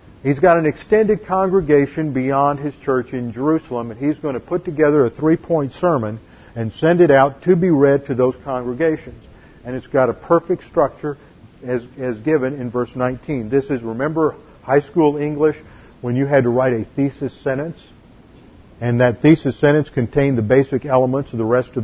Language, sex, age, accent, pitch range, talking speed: English, male, 50-69, American, 120-150 Hz, 185 wpm